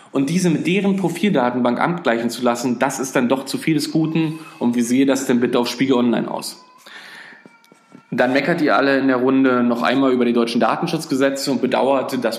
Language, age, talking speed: German, 20-39, 205 wpm